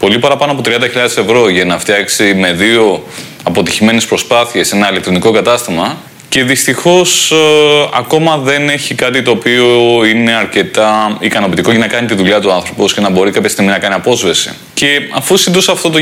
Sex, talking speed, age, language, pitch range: male, 175 wpm, 20-39, Greek, 110-140 Hz